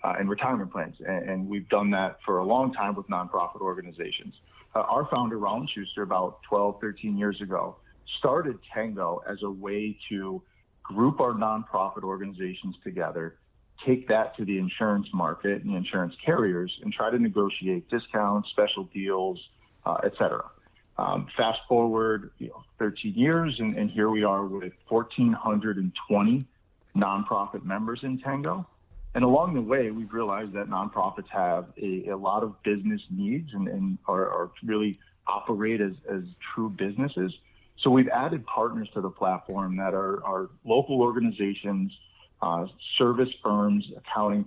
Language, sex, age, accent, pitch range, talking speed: English, male, 40-59, American, 95-115 Hz, 155 wpm